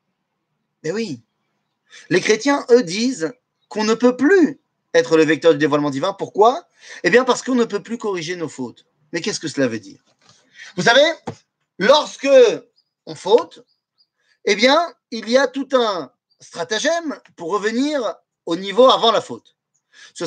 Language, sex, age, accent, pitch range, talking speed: French, male, 30-49, French, 165-275 Hz, 160 wpm